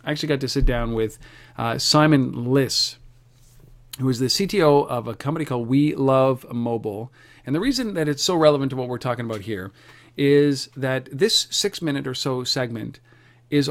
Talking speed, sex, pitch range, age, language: 190 wpm, male, 120-145 Hz, 40-59, English